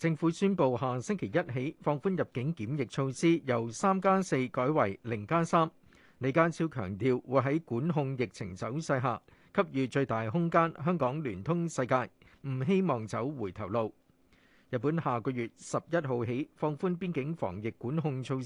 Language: Chinese